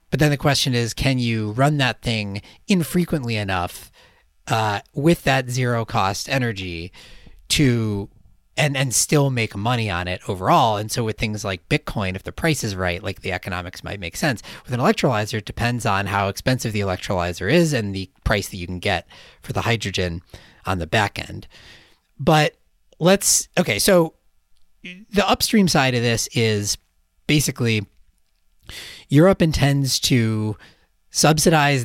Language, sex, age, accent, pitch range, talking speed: English, male, 40-59, American, 95-135 Hz, 155 wpm